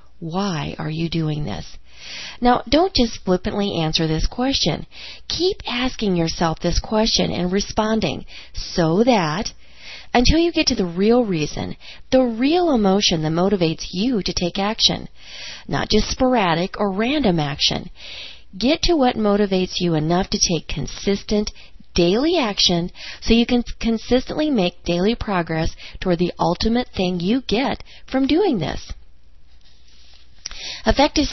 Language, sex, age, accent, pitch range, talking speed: English, female, 40-59, American, 165-230 Hz, 135 wpm